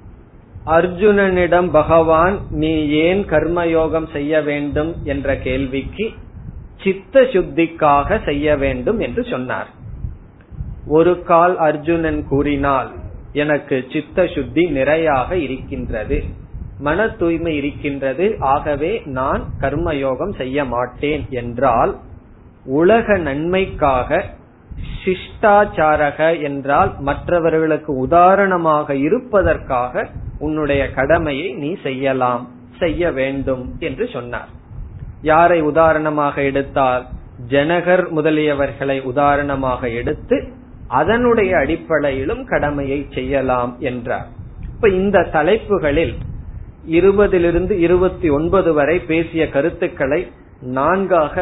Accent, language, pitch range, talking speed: native, Tamil, 135-170 Hz, 70 wpm